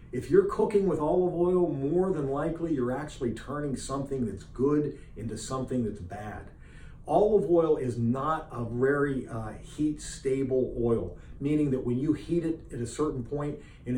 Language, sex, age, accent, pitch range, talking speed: English, male, 50-69, American, 120-150 Hz, 170 wpm